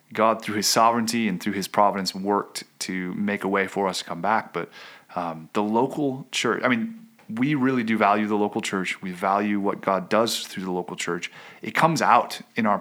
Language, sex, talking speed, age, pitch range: English, male, 210 wpm, 30-49, 100-130 Hz